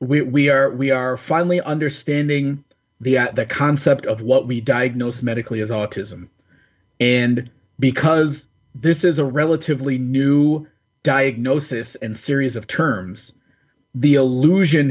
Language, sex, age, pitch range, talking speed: English, male, 30-49, 125-150 Hz, 130 wpm